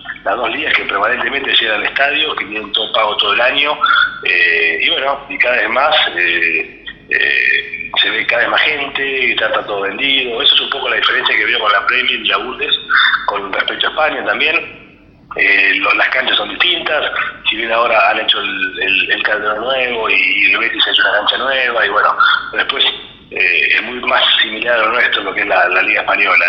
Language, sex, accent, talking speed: Spanish, male, Argentinian, 215 wpm